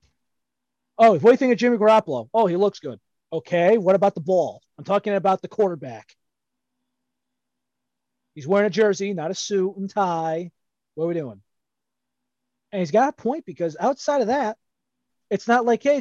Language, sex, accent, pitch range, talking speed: English, male, American, 150-235 Hz, 180 wpm